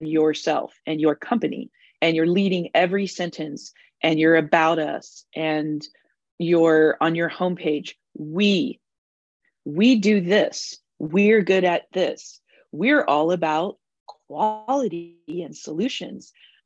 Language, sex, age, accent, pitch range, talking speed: English, female, 30-49, American, 155-195 Hz, 115 wpm